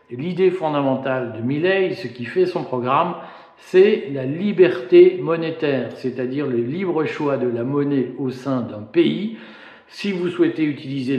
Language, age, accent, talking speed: French, 50-69, French, 150 wpm